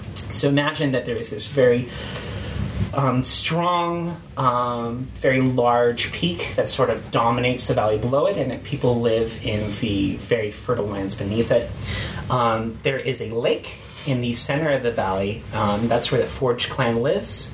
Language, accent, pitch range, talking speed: English, American, 110-130 Hz, 170 wpm